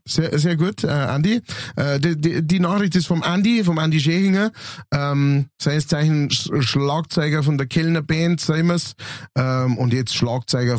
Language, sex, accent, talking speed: German, male, German, 160 wpm